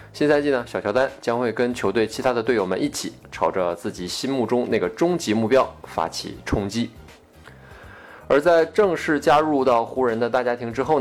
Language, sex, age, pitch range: Chinese, male, 20-39, 100-140 Hz